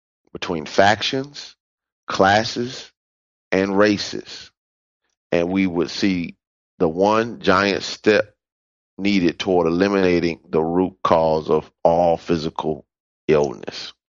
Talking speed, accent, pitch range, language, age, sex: 100 wpm, American, 80-100 Hz, English, 30-49, male